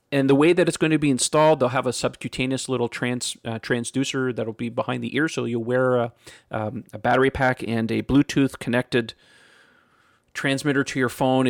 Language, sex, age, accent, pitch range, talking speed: English, male, 40-59, American, 120-145 Hz, 200 wpm